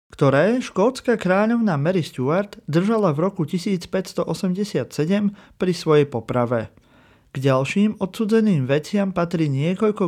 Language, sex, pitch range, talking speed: Slovak, male, 135-185 Hz, 105 wpm